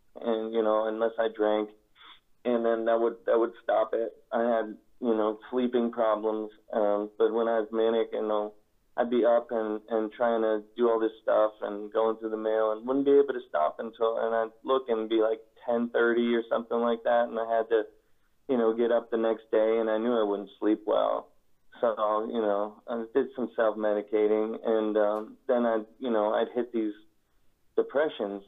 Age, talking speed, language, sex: 30-49, 205 wpm, English, male